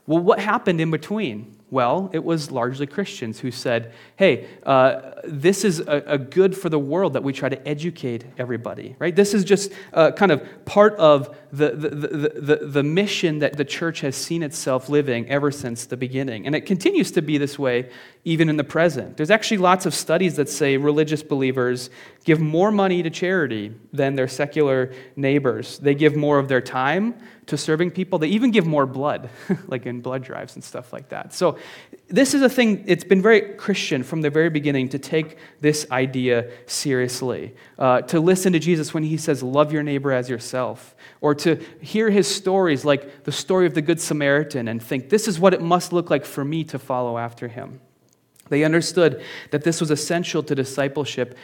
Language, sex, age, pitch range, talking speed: English, male, 30-49, 130-175 Hz, 200 wpm